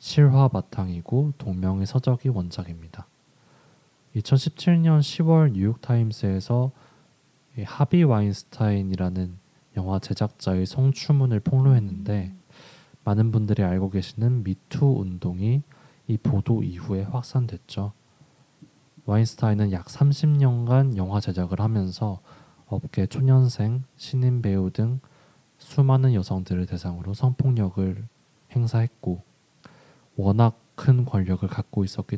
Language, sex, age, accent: Korean, male, 20-39, native